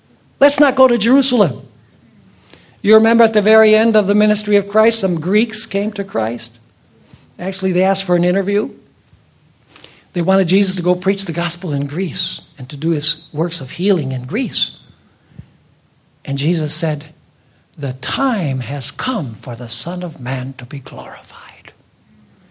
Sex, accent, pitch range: male, American, 145-200 Hz